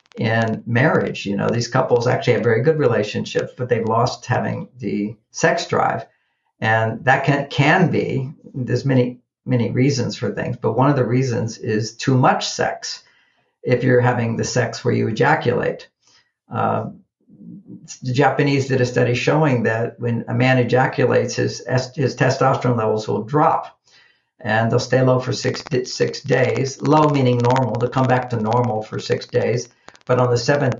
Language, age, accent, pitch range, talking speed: English, 50-69, American, 120-135 Hz, 170 wpm